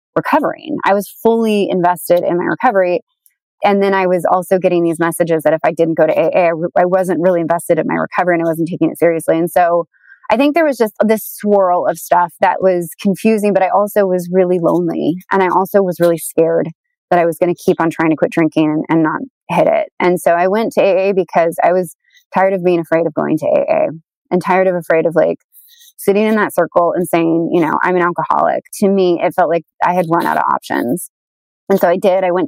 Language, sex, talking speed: English, female, 240 wpm